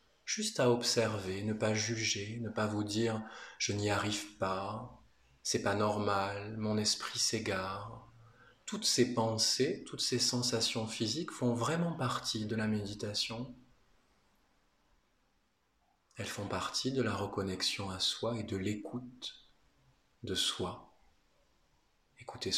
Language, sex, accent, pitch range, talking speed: French, male, French, 95-120 Hz, 125 wpm